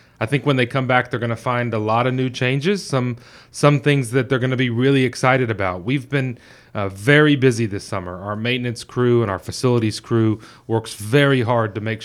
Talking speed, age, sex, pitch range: 225 wpm, 30-49, male, 110-130 Hz